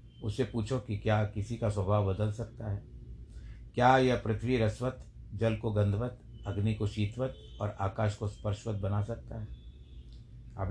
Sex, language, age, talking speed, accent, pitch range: male, Hindi, 60-79, 155 wpm, native, 100-115 Hz